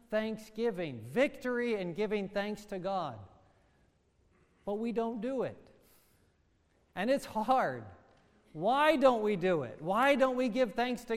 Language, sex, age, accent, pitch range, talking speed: English, male, 40-59, American, 205-250 Hz, 140 wpm